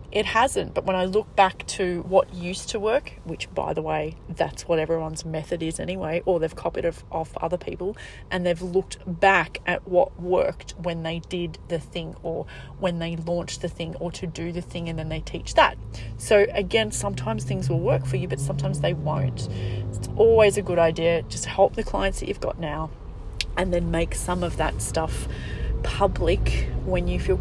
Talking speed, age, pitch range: 200 wpm, 30-49, 120-180 Hz